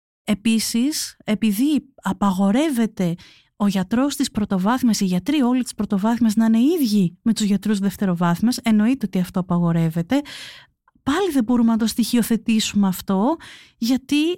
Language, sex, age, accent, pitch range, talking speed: Greek, female, 30-49, native, 190-245 Hz, 130 wpm